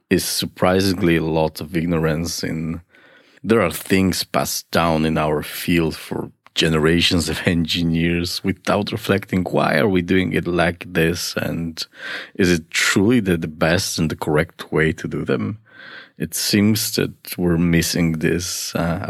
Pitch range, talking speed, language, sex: 85-95 Hz, 155 wpm, English, male